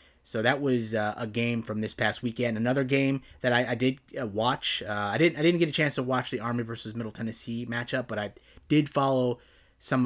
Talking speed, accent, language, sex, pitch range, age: 235 wpm, American, English, male, 115-135 Hz, 30-49